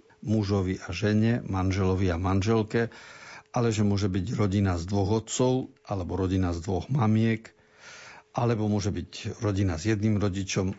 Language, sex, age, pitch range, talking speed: Slovak, male, 50-69, 105-130 Hz, 145 wpm